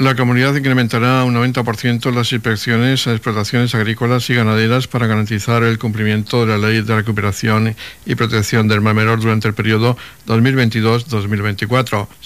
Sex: male